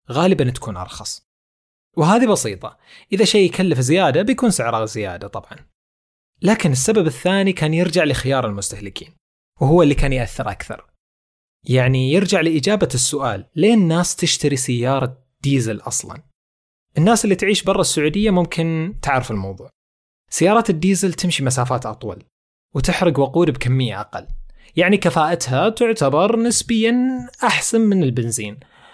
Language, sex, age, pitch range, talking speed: Arabic, male, 30-49, 120-175 Hz, 120 wpm